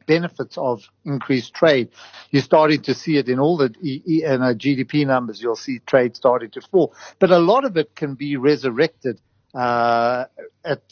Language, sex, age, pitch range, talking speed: English, male, 50-69, 120-155 Hz, 165 wpm